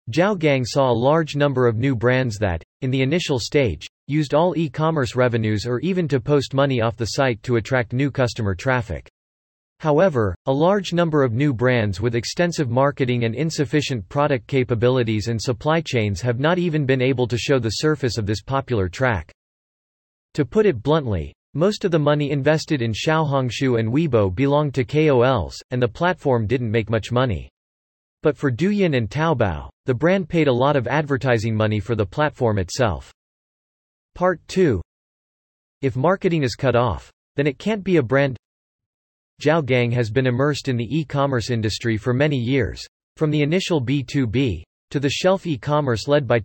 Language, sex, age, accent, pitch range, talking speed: English, male, 40-59, American, 115-150 Hz, 175 wpm